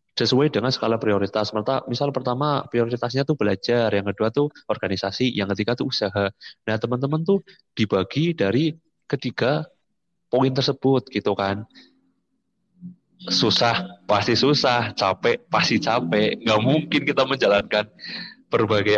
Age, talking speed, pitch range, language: 20-39, 125 wpm, 100-135 Hz, Indonesian